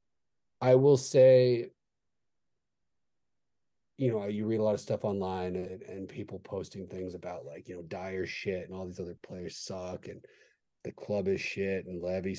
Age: 30-49